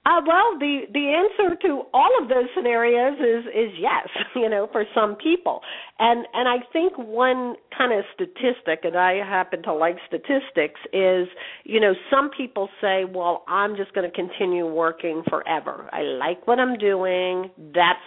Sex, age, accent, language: female, 50-69, American, English